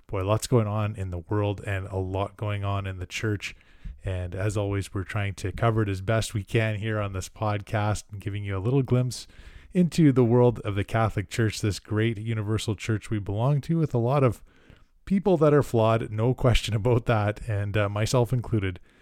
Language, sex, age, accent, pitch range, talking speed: English, male, 20-39, American, 100-120 Hz, 210 wpm